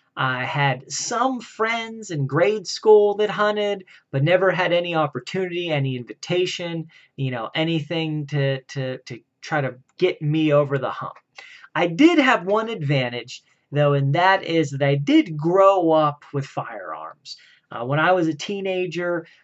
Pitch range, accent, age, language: 140-165 Hz, American, 30-49, English